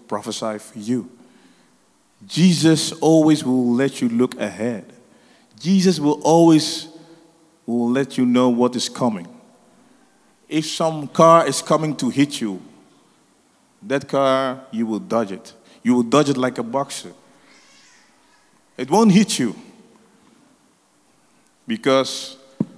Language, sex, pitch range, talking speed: English, male, 130-170 Hz, 120 wpm